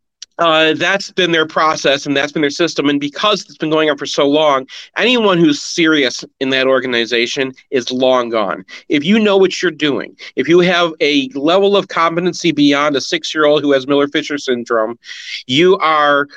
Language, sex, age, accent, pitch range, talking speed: English, male, 40-59, American, 145-180 Hz, 185 wpm